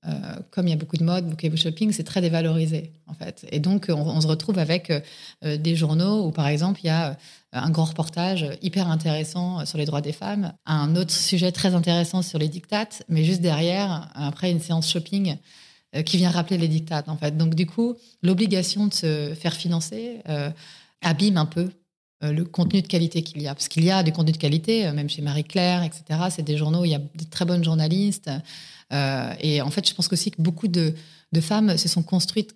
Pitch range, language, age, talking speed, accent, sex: 155-180 Hz, French, 30-49, 225 wpm, French, female